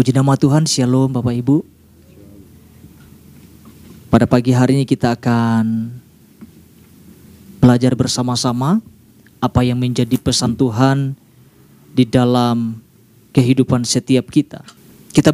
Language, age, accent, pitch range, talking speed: Indonesian, 20-39, native, 125-190 Hz, 100 wpm